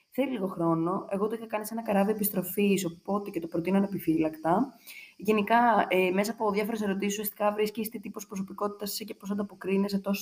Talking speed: 190 wpm